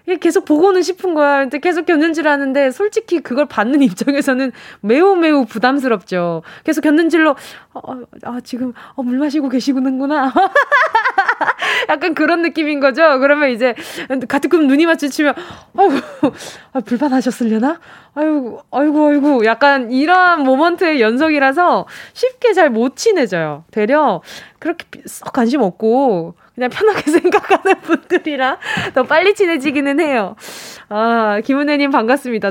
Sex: female